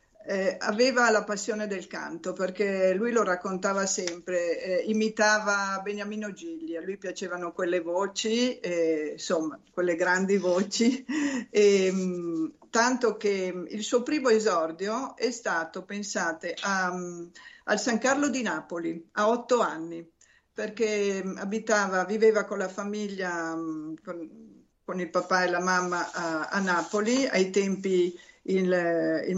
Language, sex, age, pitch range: Italian, female, 50-69, 180-220 Hz